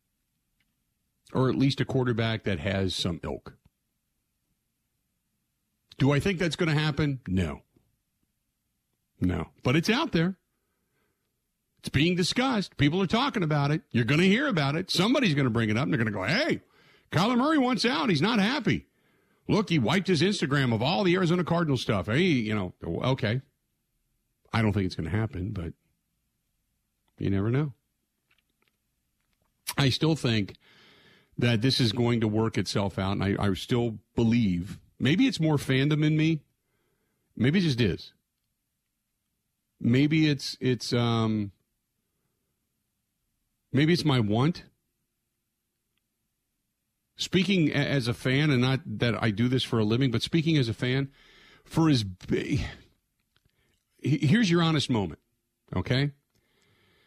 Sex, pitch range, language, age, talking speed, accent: male, 115-160 Hz, English, 50-69, 150 wpm, American